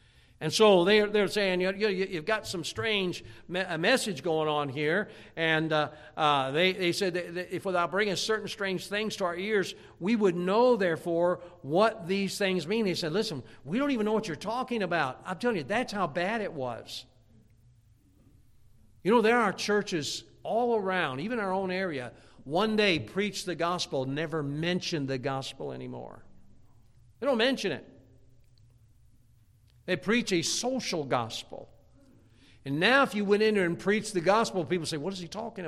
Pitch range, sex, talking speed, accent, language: 135-195 Hz, male, 165 wpm, American, English